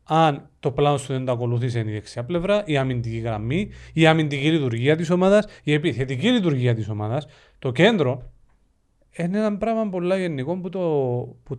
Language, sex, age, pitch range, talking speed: Greek, male, 40-59, 125-180 Hz, 150 wpm